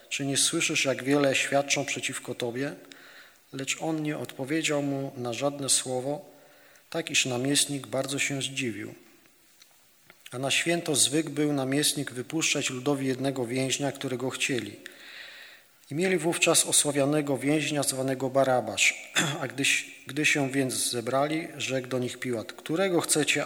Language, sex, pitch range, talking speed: Polish, male, 125-150 Hz, 135 wpm